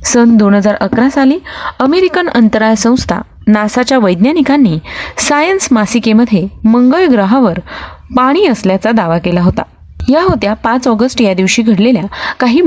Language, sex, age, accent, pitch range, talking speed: Marathi, female, 30-49, native, 195-255 Hz, 130 wpm